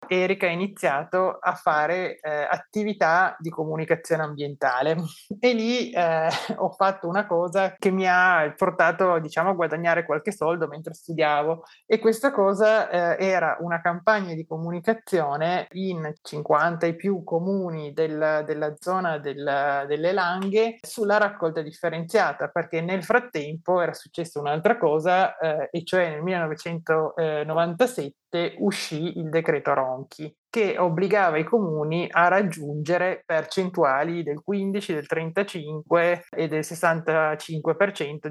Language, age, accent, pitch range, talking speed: Italian, 30-49, native, 160-195 Hz, 125 wpm